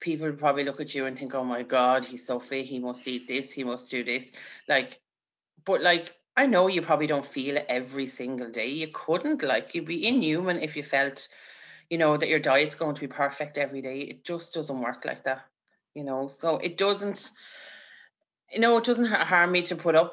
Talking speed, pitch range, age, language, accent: 225 wpm, 135-165 Hz, 30-49, English, Irish